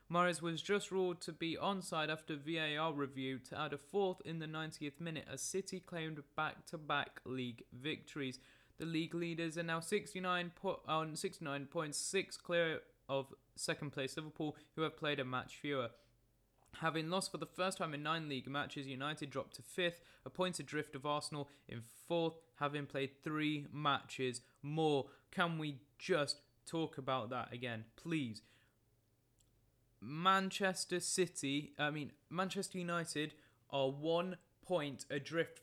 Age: 20-39